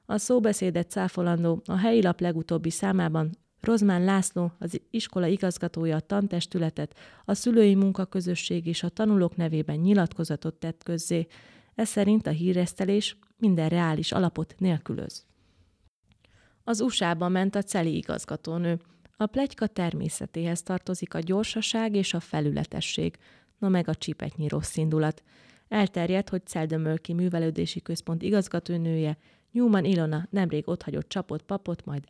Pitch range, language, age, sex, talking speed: 160-195 Hz, Hungarian, 30-49, female, 125 wpm